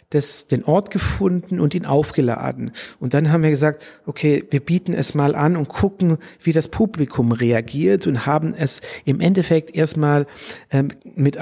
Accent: German